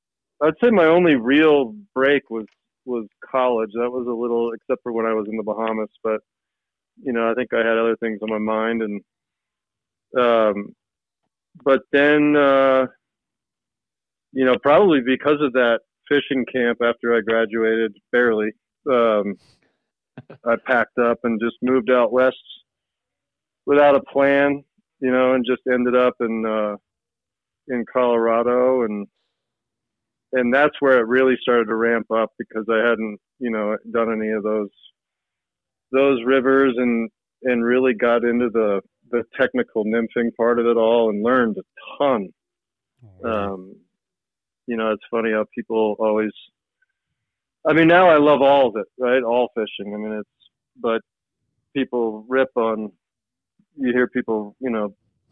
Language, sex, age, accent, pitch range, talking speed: English, male, 40-59, American, 110-130 Hz, 155 wpm